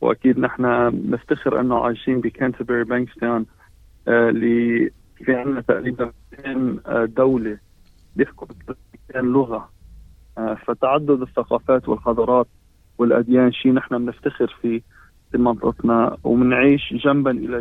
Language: Arabic